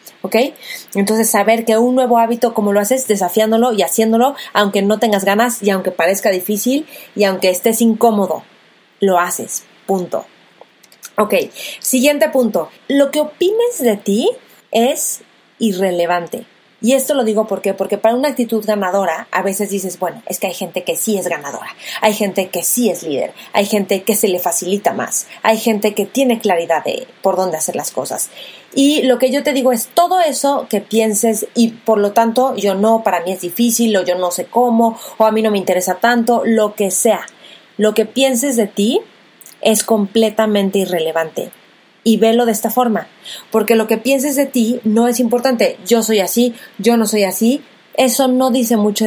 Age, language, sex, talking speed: 30-49, Spanish, female, 185 wpm